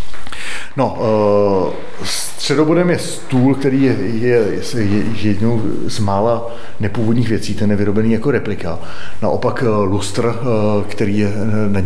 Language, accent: Czech, native